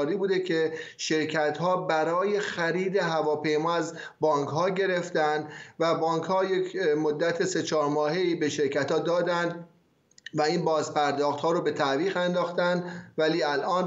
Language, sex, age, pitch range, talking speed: Persian, male, 30-49, 145-160 Hz, 145 wpm